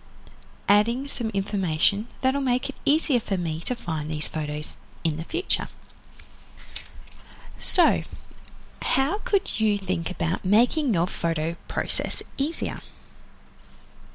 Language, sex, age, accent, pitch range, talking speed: English, female, 30-49, Australian, 165-230 Hz, 120 wpm